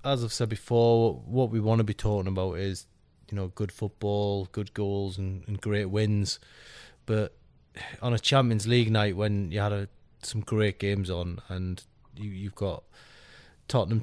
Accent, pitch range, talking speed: British, 100-120 Hz, 175 wpm